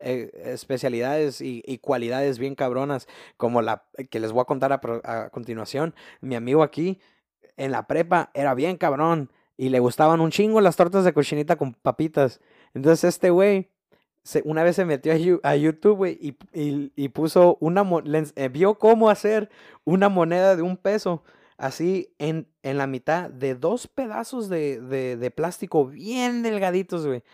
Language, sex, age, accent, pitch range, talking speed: Spanish, male, 30-49, Mexican, 135-180 Hz, 160 wpm